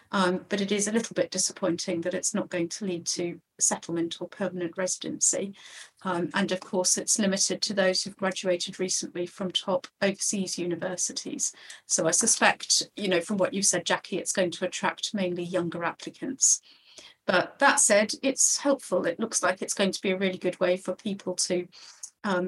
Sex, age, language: female, 40-59, English